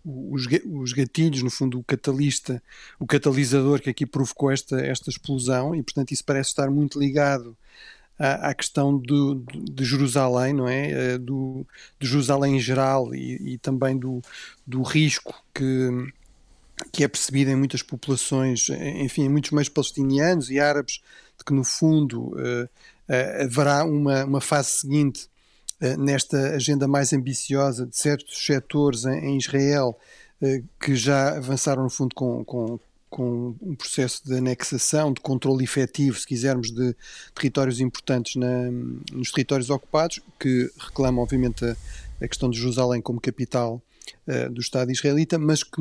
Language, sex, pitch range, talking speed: Portuguese, male, 125-145 Hz, 145 wpm